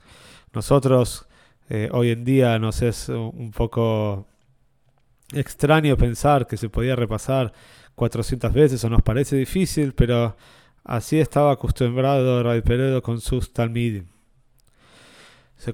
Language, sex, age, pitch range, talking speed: Spanish, male, 20-39, 115-140 Hz, 120 wpm